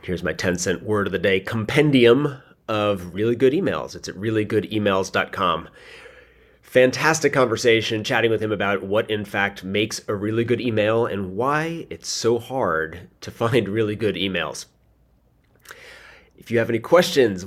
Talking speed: 155 wpm